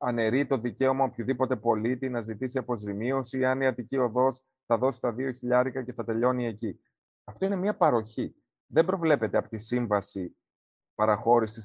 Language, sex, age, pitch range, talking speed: Greek, male, 30-49, 110-155 Hz, 160 wpm